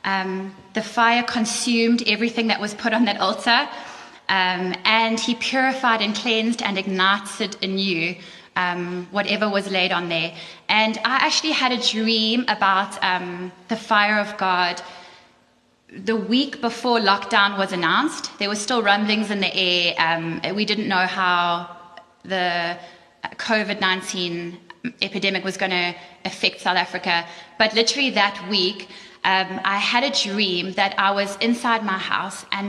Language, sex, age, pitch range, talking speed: English, female, 20-39, 190-230 Hz, 150 wpm